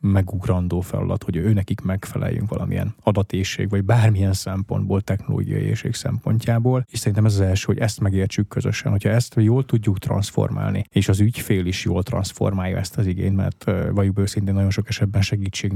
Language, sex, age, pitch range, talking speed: Hungarian, male, 20-39, 95-110 Hz, 170 wpm